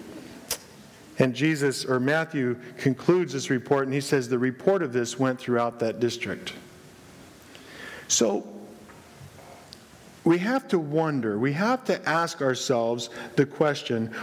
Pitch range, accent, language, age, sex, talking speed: 130-170 Hz, American, English, 50-69, male, 125 wpm